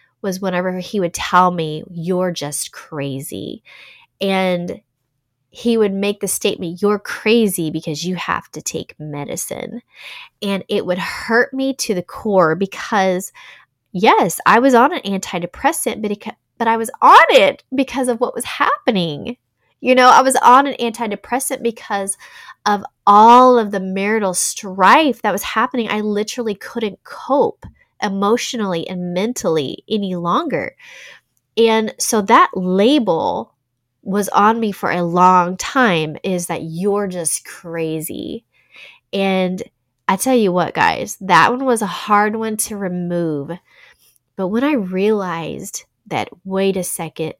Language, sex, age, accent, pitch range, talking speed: English, female, 20-39, American, 170-225 Hz, 145 wpm